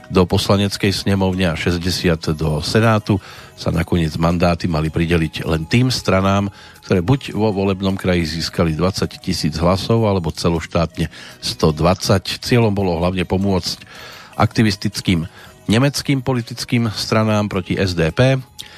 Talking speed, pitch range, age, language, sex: 120 wpm, 85-110 Hz, 40-59, Slovak, male